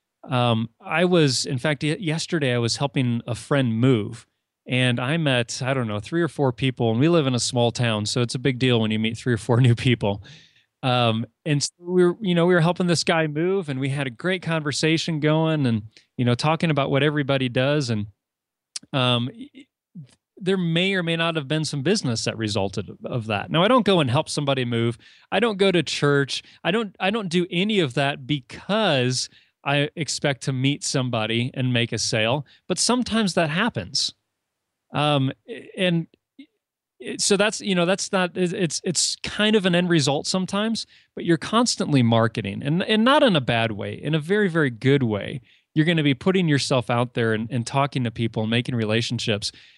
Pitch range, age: 120-175 Hz, 30-49